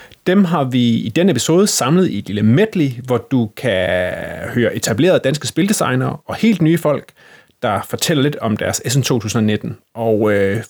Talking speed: 175 wpm